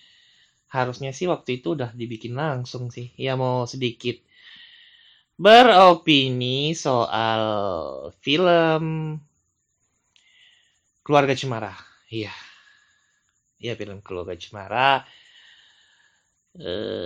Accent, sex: native, male